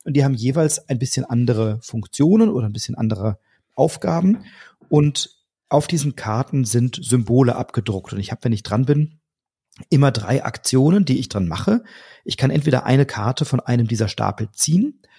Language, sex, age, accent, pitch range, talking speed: German, male, 40-59, German, 115-145 Hz, 175 wpm